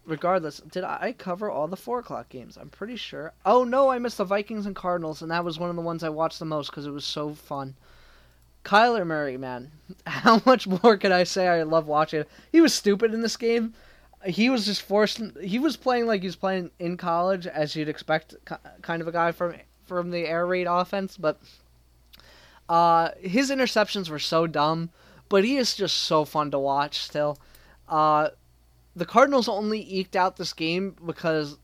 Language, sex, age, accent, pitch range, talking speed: English, male, 20-39, American, 145-190 Hz, 200 wpm